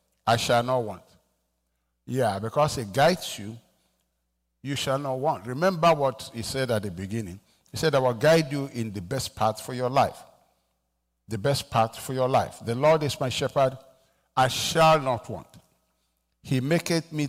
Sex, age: male, 60-79